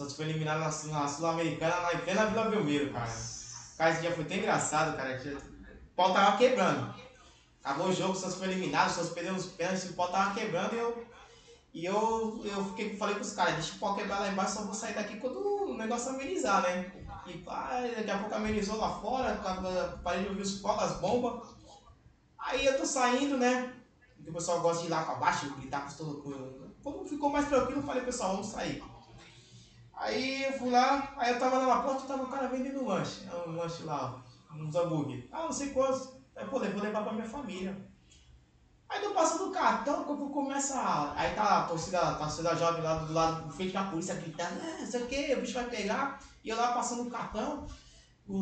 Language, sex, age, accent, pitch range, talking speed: Portuguese, male, 20-39, Brazilian, 165-245 Hz, 225 wpm